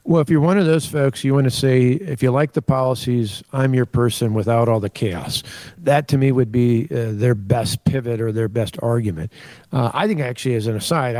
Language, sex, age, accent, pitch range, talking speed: English, male, 50-69, American, 115-140 Hz, 230 wpm